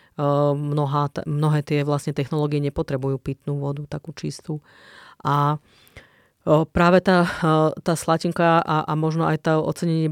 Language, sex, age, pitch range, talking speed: Slovak, female, 30-49, 150-160 Hz, 140 wpm